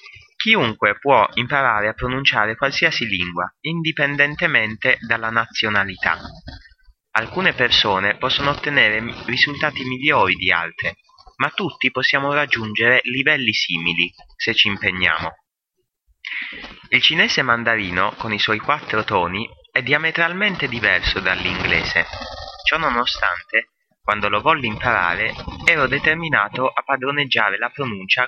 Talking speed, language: 110 wpm, English